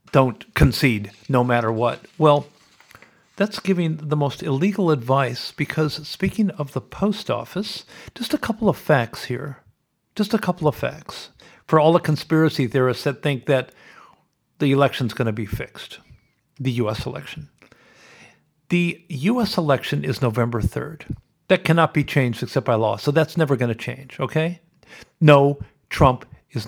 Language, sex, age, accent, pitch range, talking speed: English, male, 50-69, American, 125-155 Hz, 155 wpm